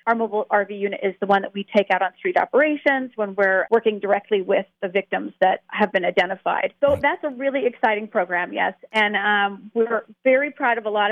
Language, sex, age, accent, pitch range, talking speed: English, female, 40-59, American, 205-275 Hz, 215 wpm